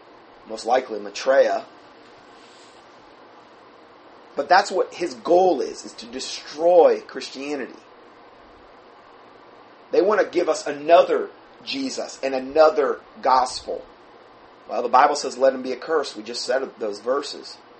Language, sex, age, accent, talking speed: English, male, 30-49, American, 120 wpm